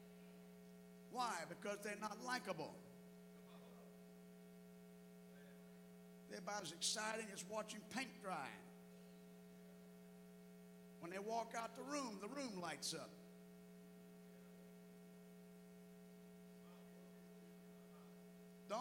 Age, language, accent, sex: 50-69, English, American, male